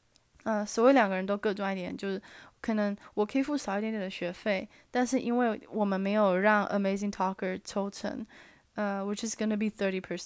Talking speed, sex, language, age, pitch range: 65 wpm, female, English, 20-39, 190-225 Hz